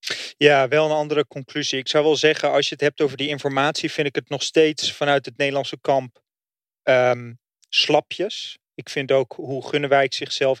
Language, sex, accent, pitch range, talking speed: English, male, Dutch, 130-145 Hz, 180 wpm